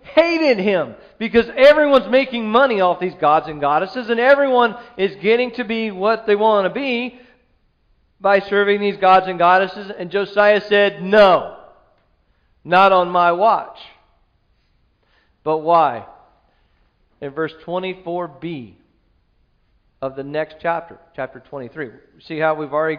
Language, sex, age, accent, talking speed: English, male, 40-59, American, 135 wpm